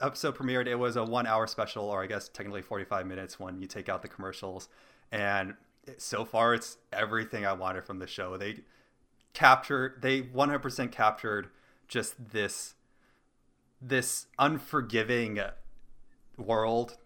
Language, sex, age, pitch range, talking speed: English, male, 20-39, 100-130 Hz, 140 wpm